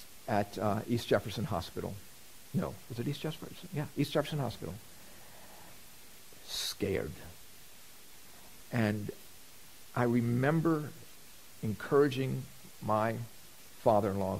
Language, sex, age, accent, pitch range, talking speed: English, male, 50-69, American, 105-140 Hz, 90 wpm